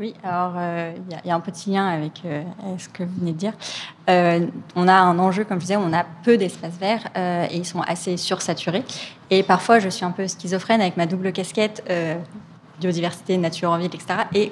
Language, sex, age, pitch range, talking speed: French, female, 20-39, 170-195 Hz, 230 wpm